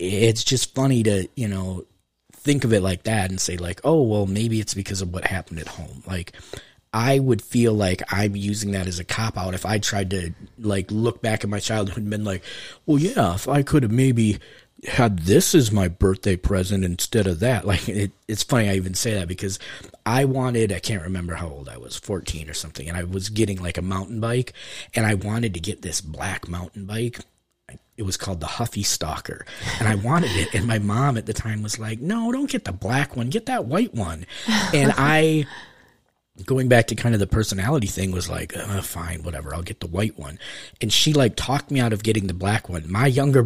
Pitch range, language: 95-125 Hz, English